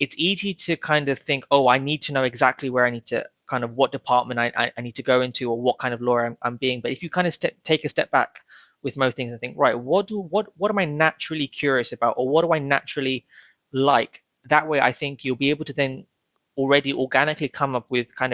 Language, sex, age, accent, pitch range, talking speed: English, male, 20-39, British, 125-145 Hz, 260 wpm